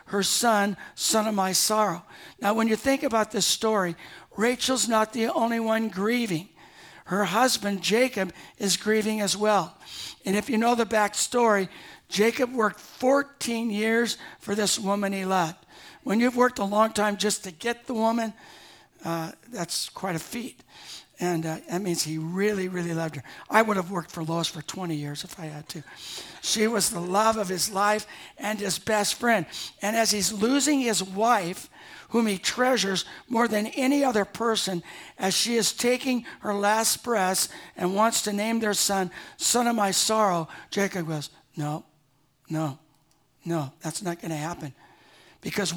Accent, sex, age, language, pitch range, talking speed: American, male, 60-79, English, 175-225 Hz, 175 wpm